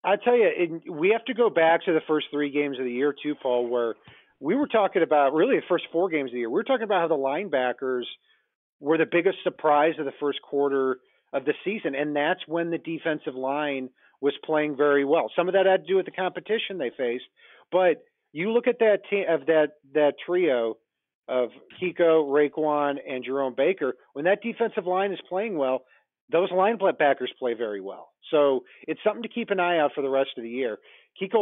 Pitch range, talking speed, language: 140-190 Hz, 210 wpm, English